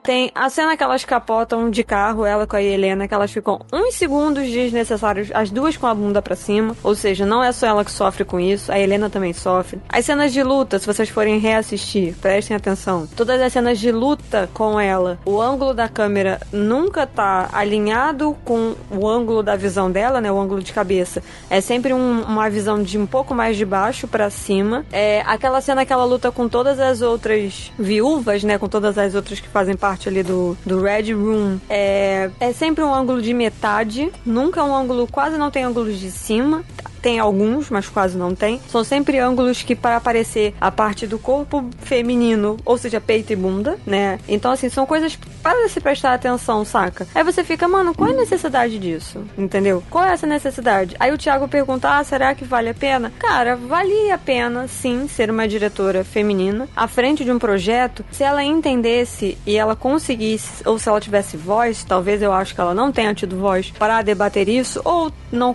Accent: Brazilian